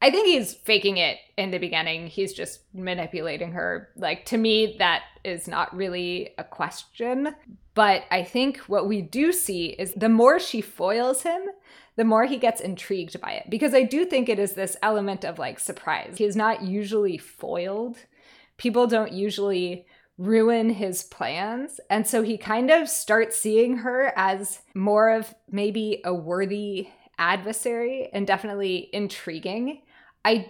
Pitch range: 190-230 Hz